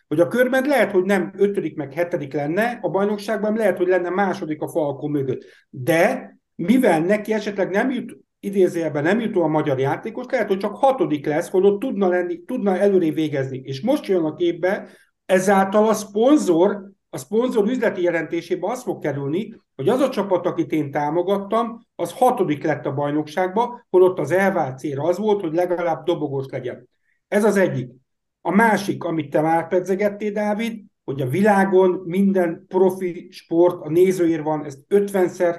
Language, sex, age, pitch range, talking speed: Hungarian, male, 60-79, 160-200 Hz, 170 wpm